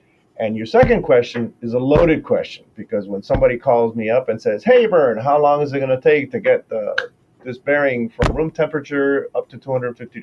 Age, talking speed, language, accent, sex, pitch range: 40-59, 210 wpm, English, American, male, 105-150 Hz